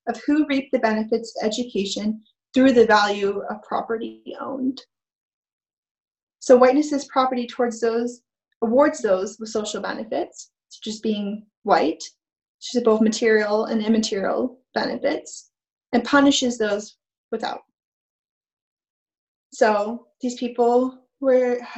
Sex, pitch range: female, 225-260 Hz